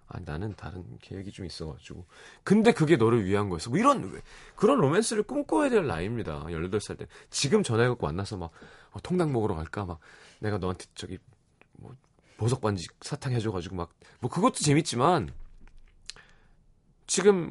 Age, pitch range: 30-49, 90-150 Hz